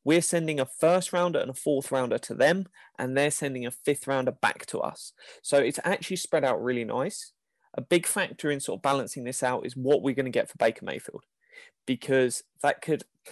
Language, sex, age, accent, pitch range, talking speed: English, male, 20-39, British, 125-155 Hz, 215 wpm